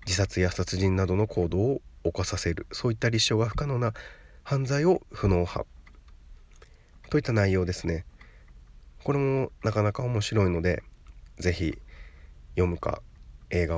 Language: Japanese